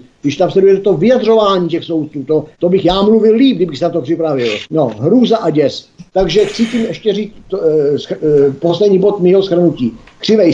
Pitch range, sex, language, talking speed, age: 150-200 Hz, male, Czech, 205 wpm, 50-69